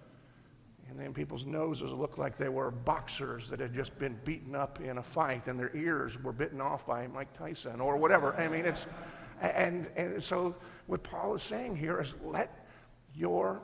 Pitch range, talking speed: 120-140 Hz, 185 wpm